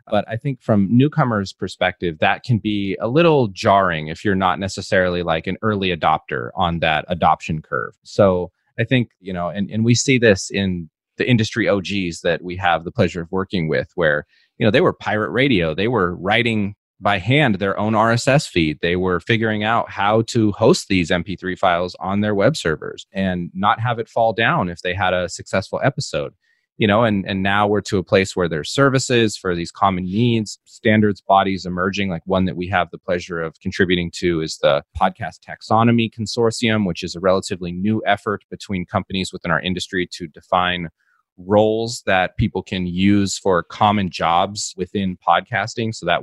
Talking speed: 190 wpm